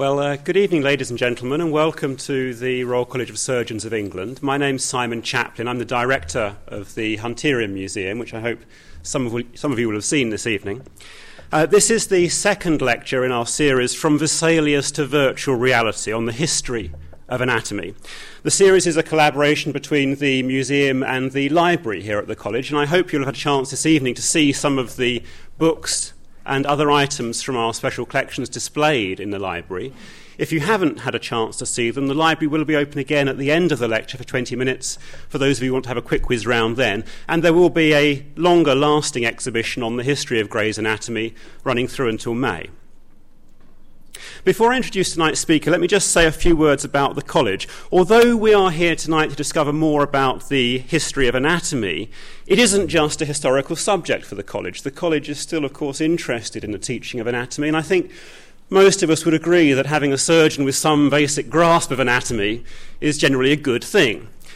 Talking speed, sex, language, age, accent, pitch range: 210 wpm, male, English, 30-49, British, 125-155 Hz